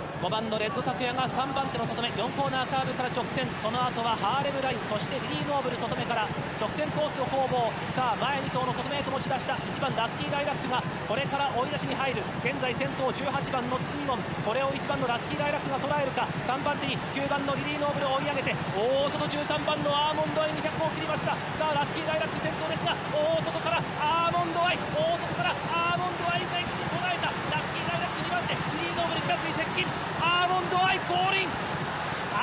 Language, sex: Chinese, male